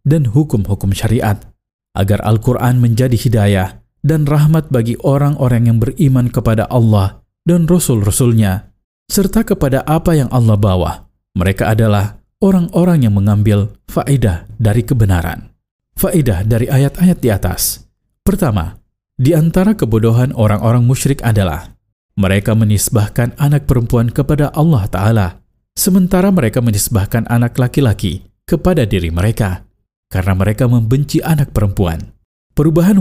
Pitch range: 100-140 Hz